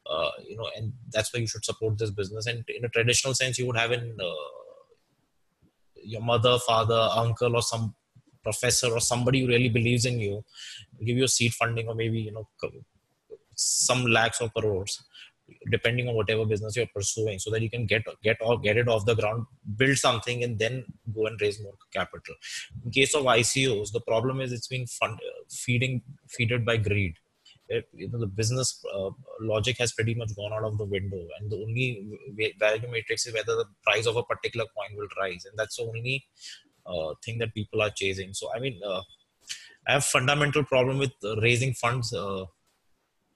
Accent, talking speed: Indian, 195 wpm